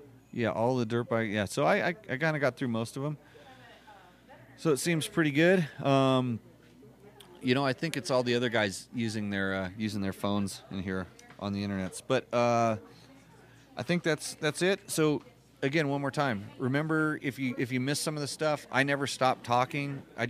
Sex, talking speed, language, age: male, 205 wpm, English, 30-49